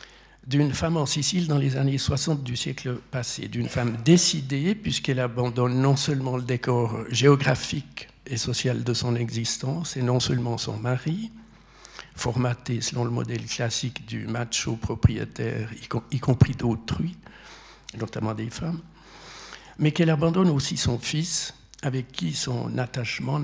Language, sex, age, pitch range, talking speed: French, male, 60-79, 120-145 Hz, 140 wpm